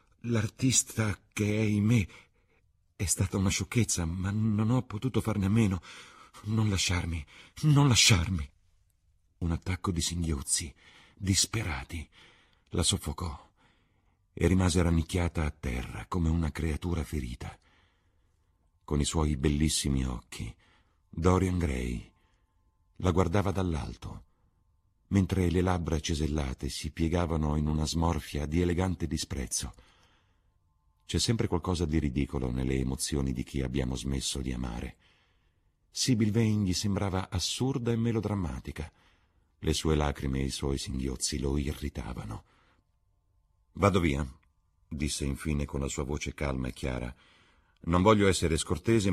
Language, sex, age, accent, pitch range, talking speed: Italian, male, 50-69, native, 75-95 Hz, 125 wpm